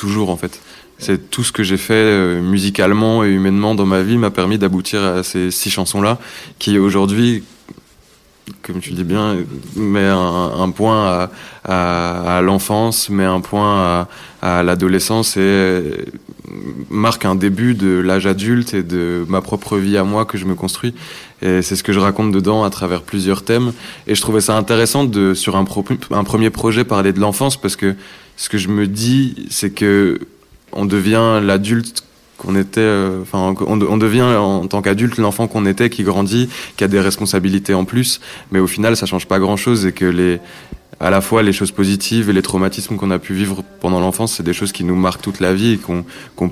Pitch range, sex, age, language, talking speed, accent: 95-110 Hz, male, 20-39, French, 200 wpm, French